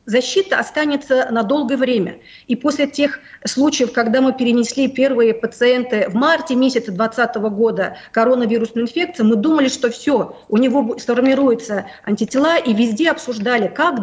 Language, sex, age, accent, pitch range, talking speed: Russian, female, 40-59, native, 230-275 Hz, 140 wpm